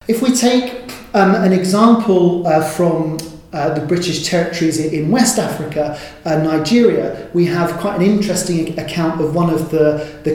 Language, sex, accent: English, male, British